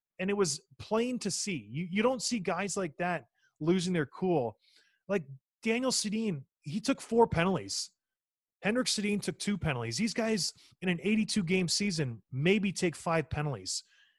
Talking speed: 160 wpm